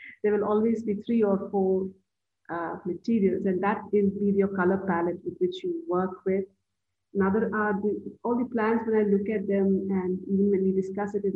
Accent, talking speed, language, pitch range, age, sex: Indian, 205 wpm, English, 185-215 Hz, 50-69, female